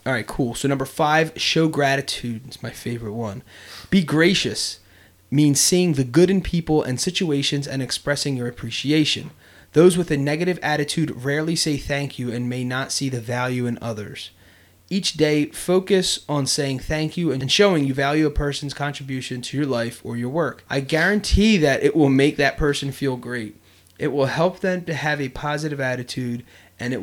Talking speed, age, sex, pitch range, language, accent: 185 wpm, 30-49, male, 120-150 Hz, English, American